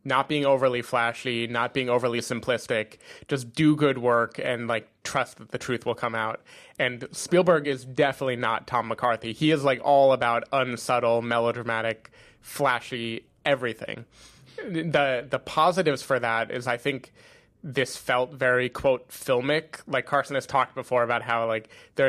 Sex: male